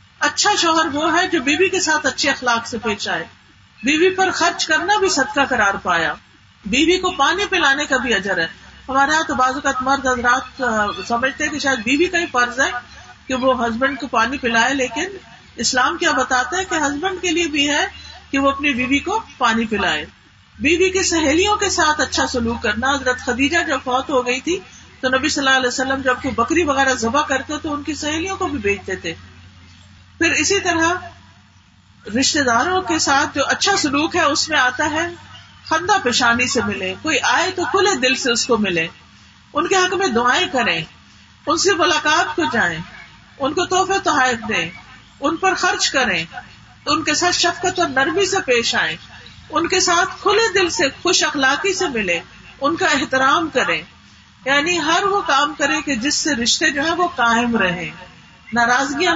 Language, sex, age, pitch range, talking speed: Urdu, female, 50-69, 250-340 Hz, 195 wpm